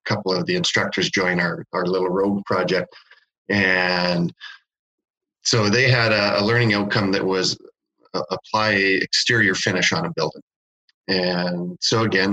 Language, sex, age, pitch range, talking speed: English, male, 40-59, 90-105 Hz, 140 wpm